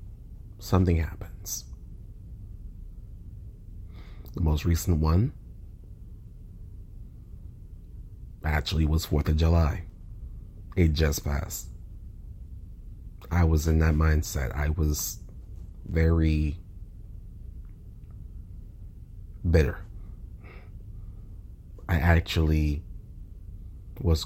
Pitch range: 80-100 Hz